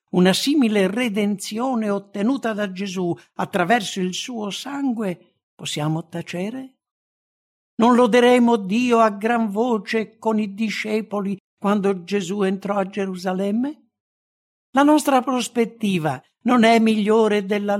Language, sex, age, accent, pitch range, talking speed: English, male, 60-79, Italian, 155-220 Hz, 110 wpm